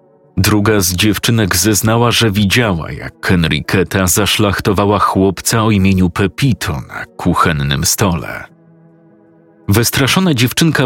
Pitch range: 90-115 Hz